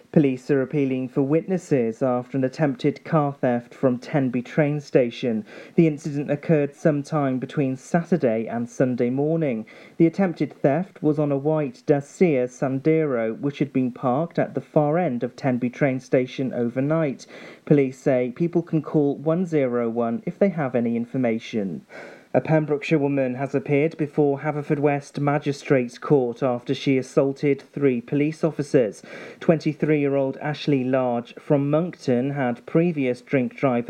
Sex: male